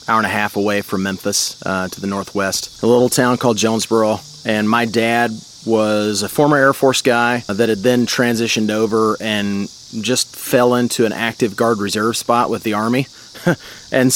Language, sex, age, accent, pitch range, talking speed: English, male, 30-49, American, 110-125 Hz, 180 wpm